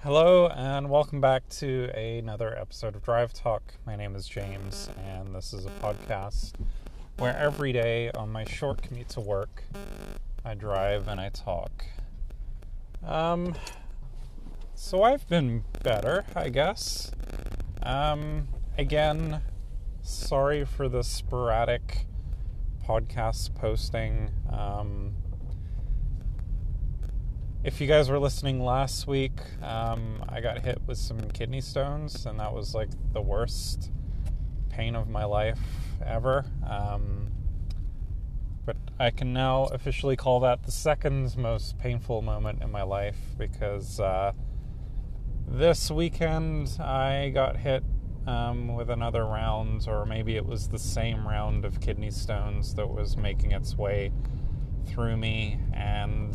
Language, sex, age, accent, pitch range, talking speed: English, male, 30-49, American, 100-125 Hz, 130 wpm